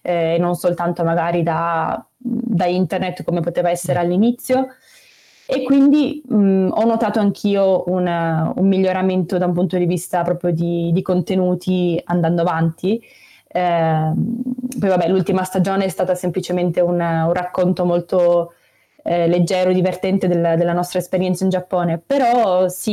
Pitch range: 175-195 Hz